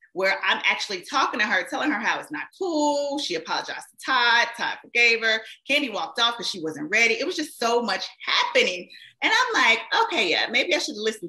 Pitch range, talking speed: 190-315 Hz, 220 wpm